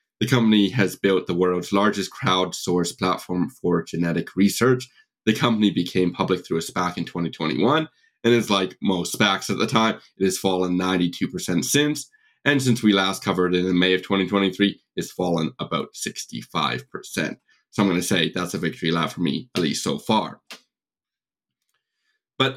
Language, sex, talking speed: English, male, 170 wpm